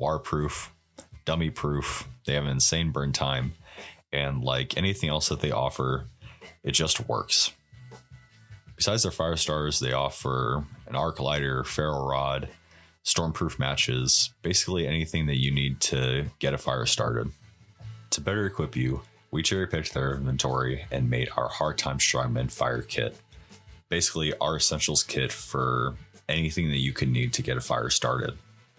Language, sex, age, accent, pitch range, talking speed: English, male, 30-49, American, 65-85 Hz, 150 wpm